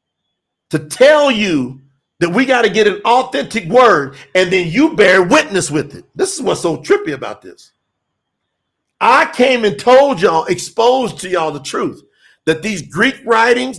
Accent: American